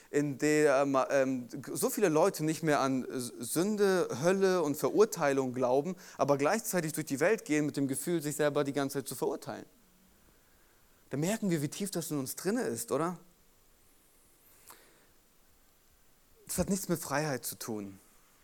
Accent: German